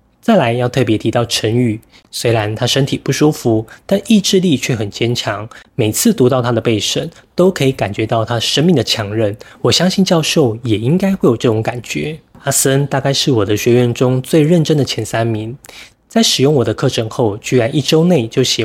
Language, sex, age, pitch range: Chinese, male, 20-39, 115-150 Hz